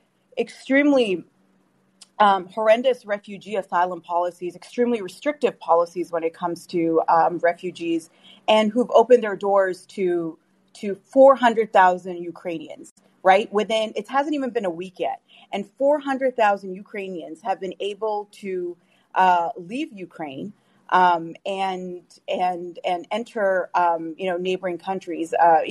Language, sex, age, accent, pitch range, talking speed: English, female, 30-49, American, 175-215 Hz, 135 wpm